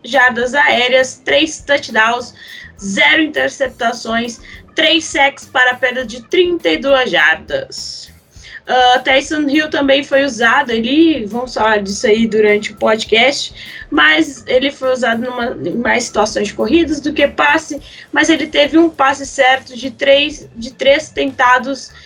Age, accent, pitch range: 10-29, Brazilian, 230-290 Hz